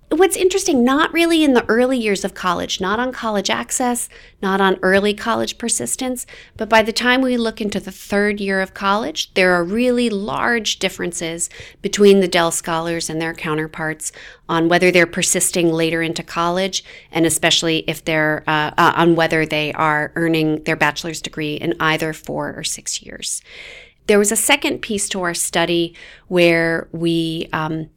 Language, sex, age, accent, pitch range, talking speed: English, female, 40-59, American, 160-210 Hz, 170 wpm